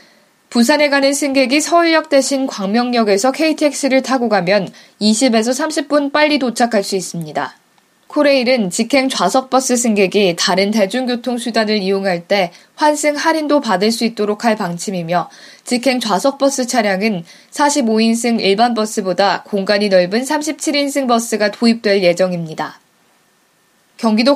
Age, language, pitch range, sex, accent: 20-39, Korean, 200-265 Hz, female, native